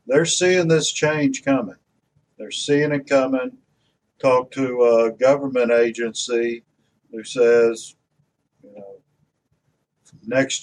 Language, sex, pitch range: English, male, 125-150 Hz